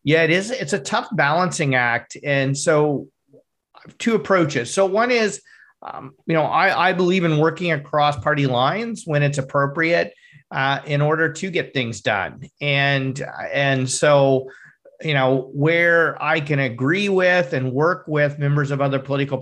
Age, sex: 40-59, male